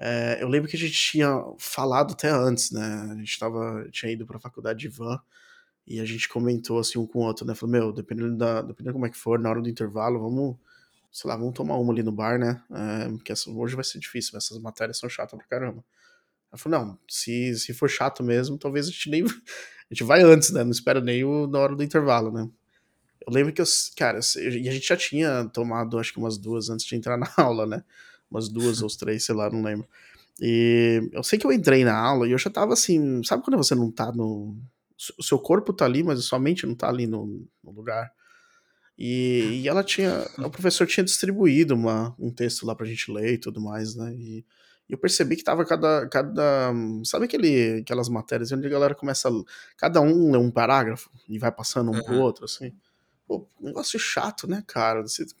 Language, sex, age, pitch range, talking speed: Portuguese, male, 20-39, 115-140 Hz, 225 wpm